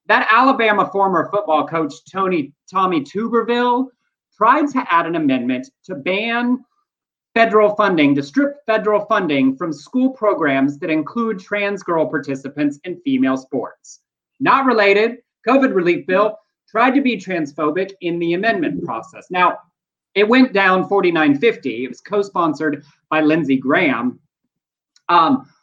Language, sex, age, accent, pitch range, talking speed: English, male, 30-49, American, 160-220 Hz, 135 wpm